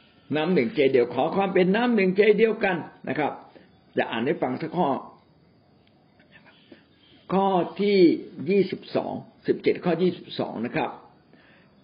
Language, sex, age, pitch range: Thai, male, 60-79, 130-190 Hz